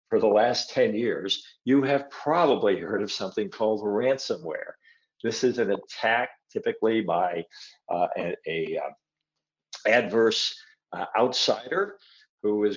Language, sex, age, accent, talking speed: English, male, 50-69, American, 125 wpm